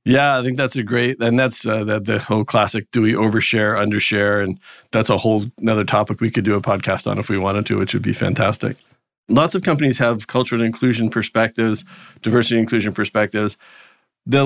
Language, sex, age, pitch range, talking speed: English, male, 40-59, 105-125 Hz, 200 wpm